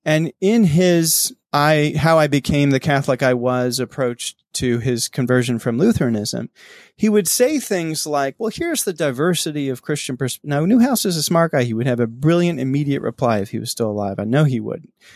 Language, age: English, 30-49